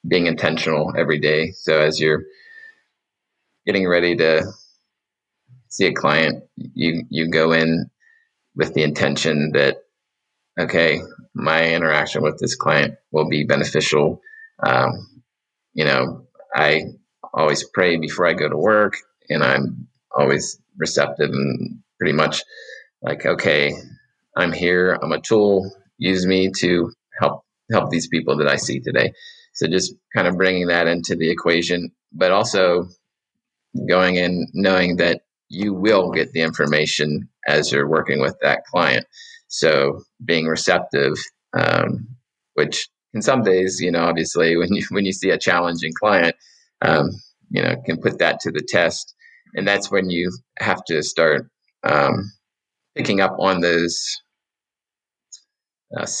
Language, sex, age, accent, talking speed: English, male, 30-49, American, 140 wpm